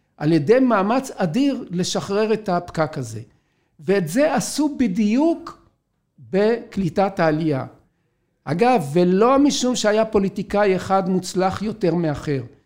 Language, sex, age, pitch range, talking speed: Hebrew, male, 50-69, 170-235 Hz, 110 wpm